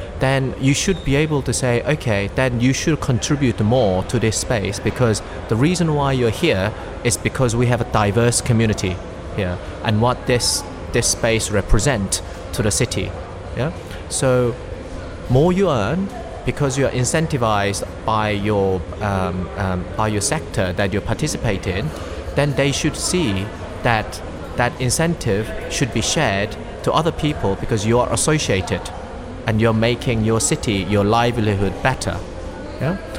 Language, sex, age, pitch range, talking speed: Ukrainian, male, 30-49, 95-130 Hz, 155 wpm